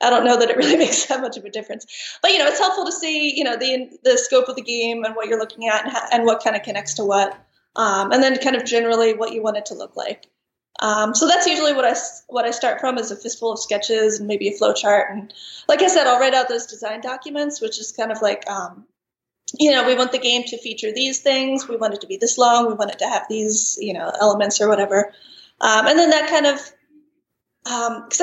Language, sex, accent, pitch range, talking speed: English, female, American, 220-265 Hz, 265 wpm